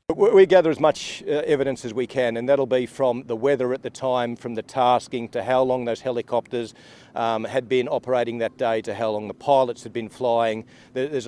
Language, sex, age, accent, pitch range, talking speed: Tamil, male, 40-59, Australian, 125-210 Hz, 215 wpm